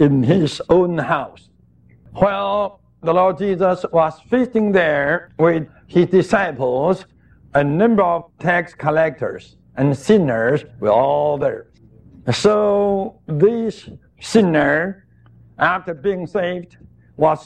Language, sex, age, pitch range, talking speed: English, male, 60-79, 150-195 Hz, 105 wpm